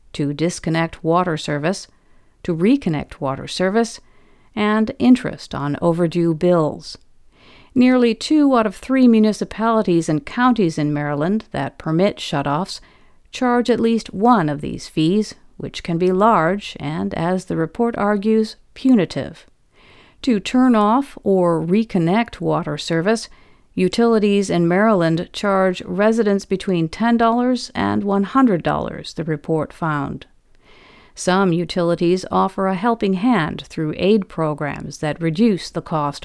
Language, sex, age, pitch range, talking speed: English, female, 50-69, 155-215 Hz, 125 wpm